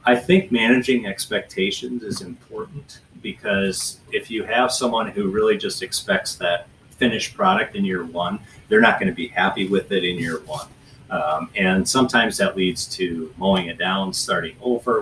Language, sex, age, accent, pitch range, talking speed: English, male, 30-49, American, 95-130 Hz, 170 wpm